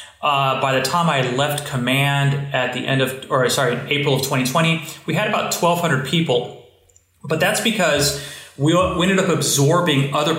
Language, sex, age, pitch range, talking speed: English, male, 30-49, 130-155 Hz, 175 wpm